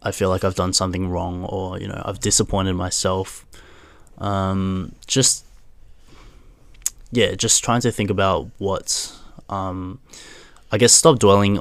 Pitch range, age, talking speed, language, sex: 95-105 Hz, 10-29, 140 wpm, English, male